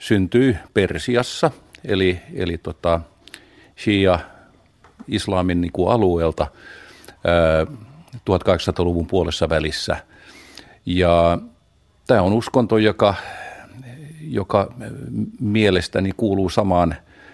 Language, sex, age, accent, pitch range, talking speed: Finnish, male, 50-69, native, 85-105 Hz, 65 wpm